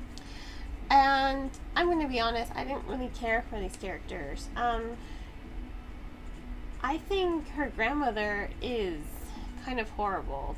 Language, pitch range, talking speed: English, 200-275 Hz, 120 wpm